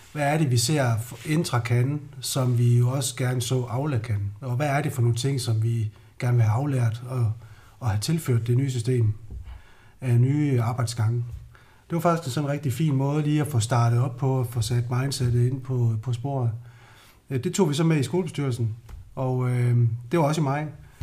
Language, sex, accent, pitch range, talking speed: Danish, male, native, 115-140 Hz, 210 wpm